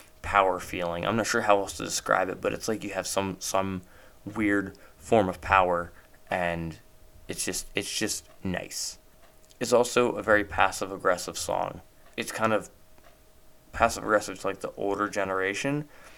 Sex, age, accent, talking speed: male, 20-39, American, 155 wpm